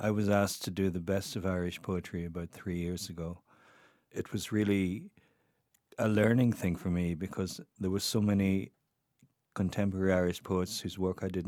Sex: male